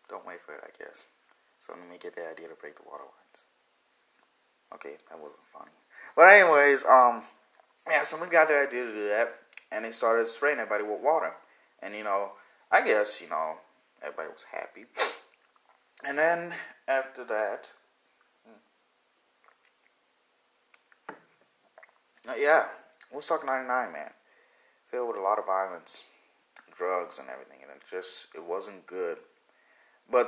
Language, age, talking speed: English, 20-39, 145 wpm